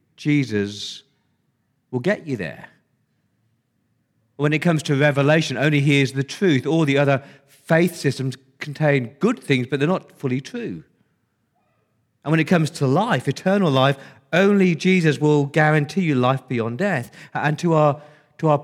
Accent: British